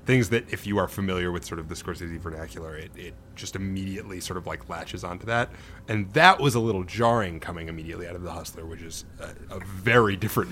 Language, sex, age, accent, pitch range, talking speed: English, male, 30-49, American, 85-95 Hz, 230 wpm